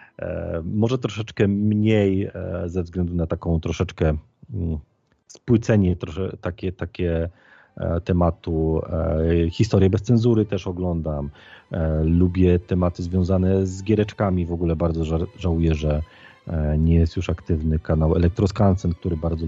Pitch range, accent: 85-100 Hz, native